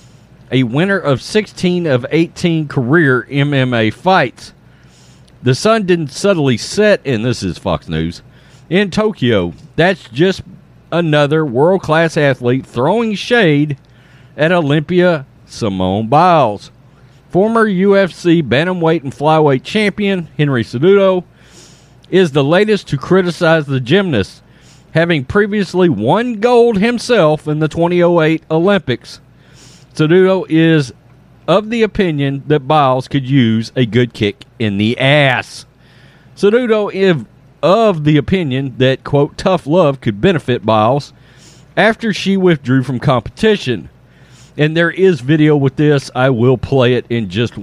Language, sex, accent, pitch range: English, male, American, 130-180 Hz